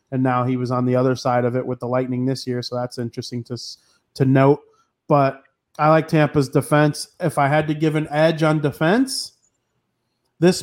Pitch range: 140-175 Hz